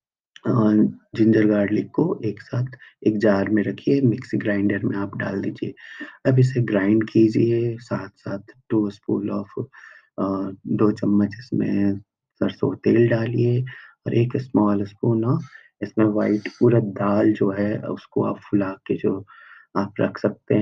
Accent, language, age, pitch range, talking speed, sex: native, Hindi, 30-49, 100-115 Hz, 145 wpm, male